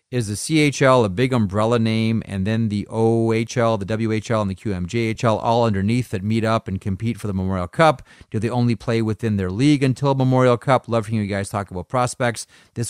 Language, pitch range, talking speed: English, 95-120 Hz, 210 wpm